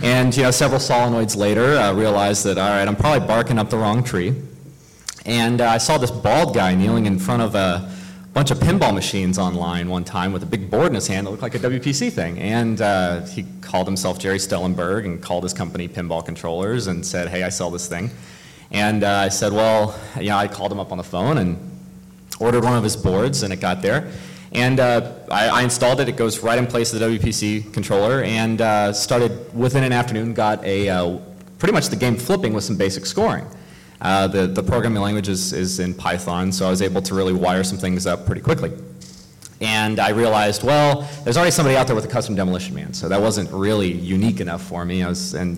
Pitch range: 95-120 Hz